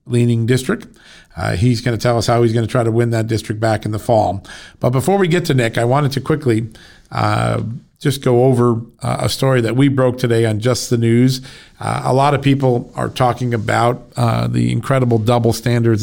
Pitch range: 115-130 Hz